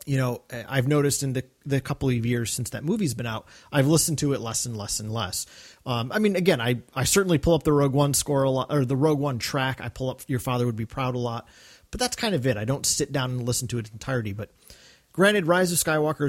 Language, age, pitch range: English, 30-49, 115-150 Hz